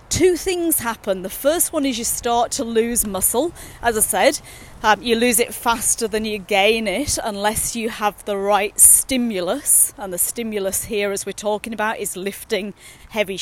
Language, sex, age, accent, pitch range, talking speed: English, female, 30-49, British, 200-260 Hz, 185 wpm